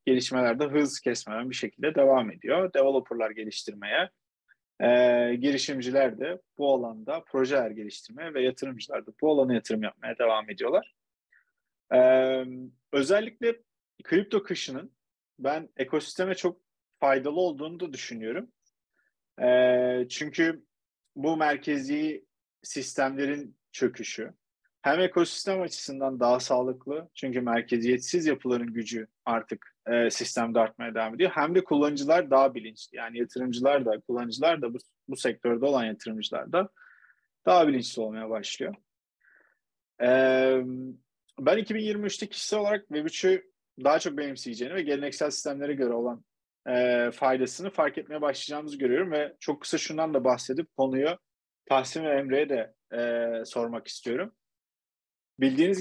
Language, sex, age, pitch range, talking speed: Turkish, male, 30-49, 120-160 Hz, 120 wpm